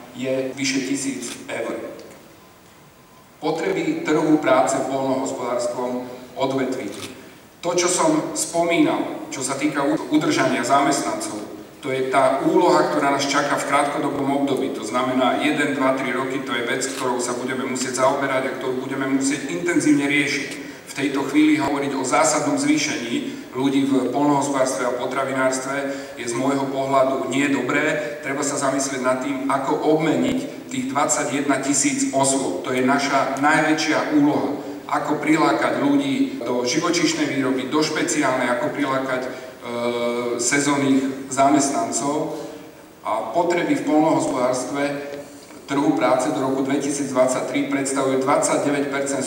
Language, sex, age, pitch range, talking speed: Slovak, male, 40-59, 130-155 Hz, 130 wpm